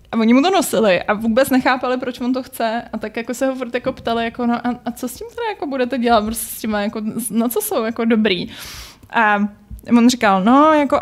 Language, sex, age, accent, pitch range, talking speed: Czech, female, 20-39, native, 220-270 Hz, 230 wpm